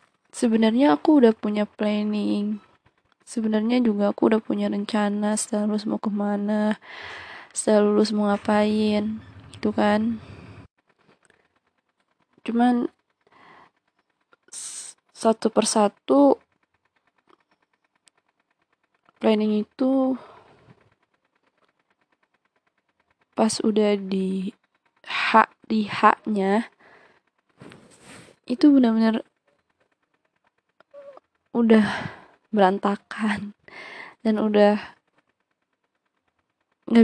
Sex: female